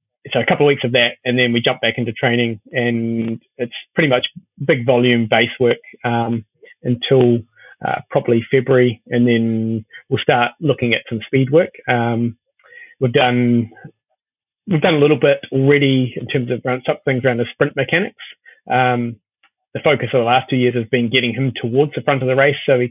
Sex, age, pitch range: male, 30-49, 115-130 Hz